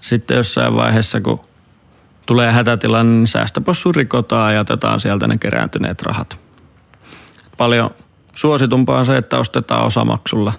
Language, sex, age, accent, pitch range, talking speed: Finnish, male, 30-49, native, 110-130 Hz, 125 wpm